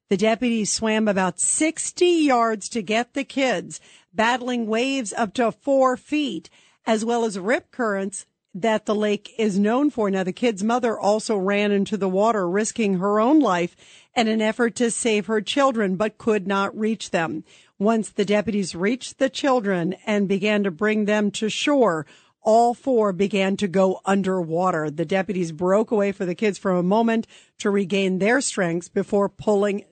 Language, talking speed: English, 175 wpm